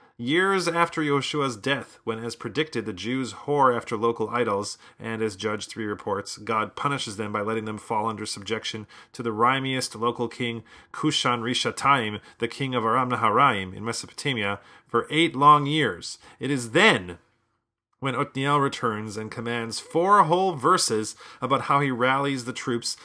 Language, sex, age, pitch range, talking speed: English, male, 30-49, 110-140 Hz, 160 wpm